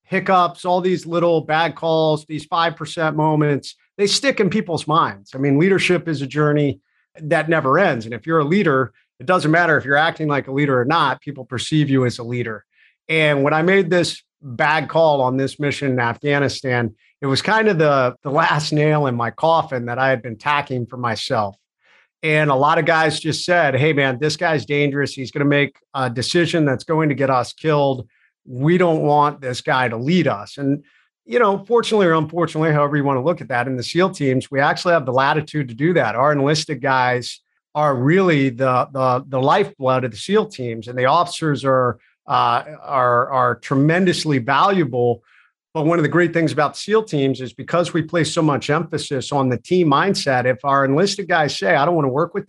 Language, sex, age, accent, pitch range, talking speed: English, male, 50-69, American, 130-165 Hz, 210 wpm